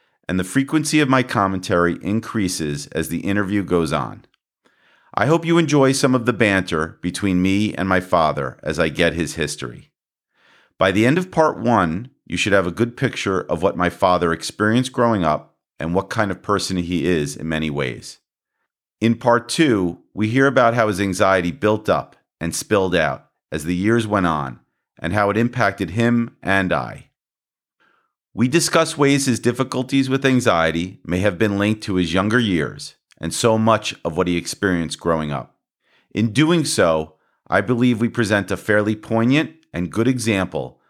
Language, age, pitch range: English, 40-59, 90-125 Hz